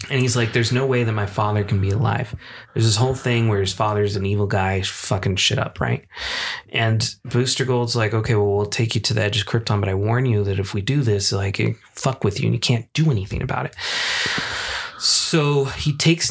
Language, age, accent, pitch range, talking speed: English, 20-39, American, 110-135 Hz, 230 wpm